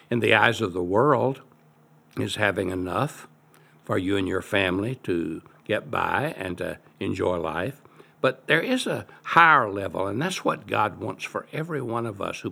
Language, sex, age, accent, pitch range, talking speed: English, male, 60-79, American, 90-130 Hz, 180 wpm